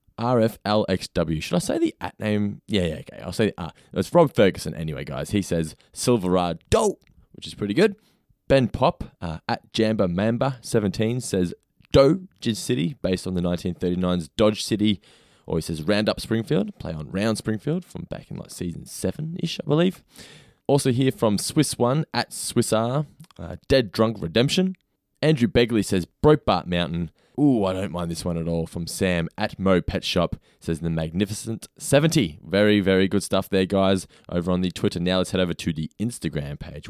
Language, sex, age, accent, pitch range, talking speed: English, male, 20-39, Australian, 90-125 Hz, 180 wpm